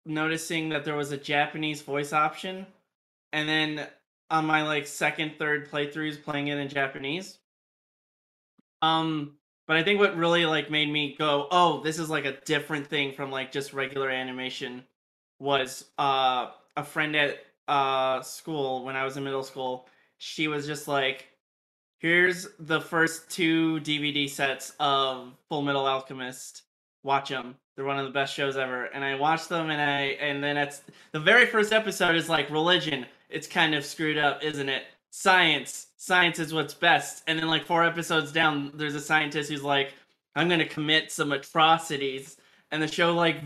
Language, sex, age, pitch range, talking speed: English, male, 20-39, 140-160 Hz, 175 wpm